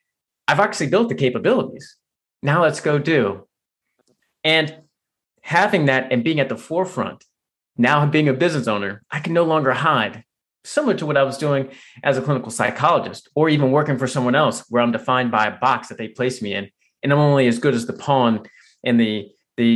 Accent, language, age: American, English, 30-49